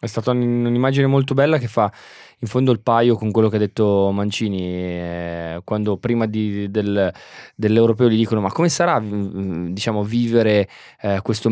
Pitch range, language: 100-125 Hz, Italian